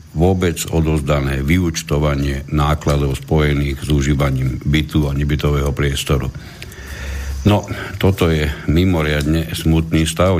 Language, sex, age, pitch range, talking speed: Slovak, male, 60-79, 75-85 Hz, 100 wpm